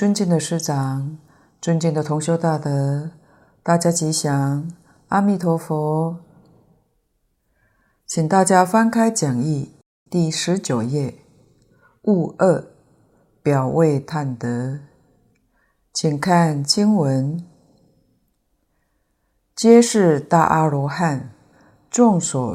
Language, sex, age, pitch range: Chinese, female, 50-69, 135-170 Hz